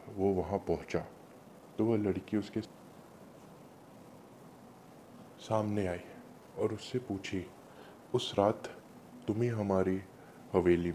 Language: Hindi